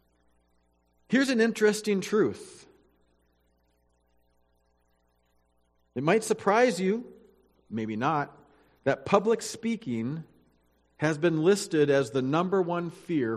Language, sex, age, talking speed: English, male, 40-59, 95 wpm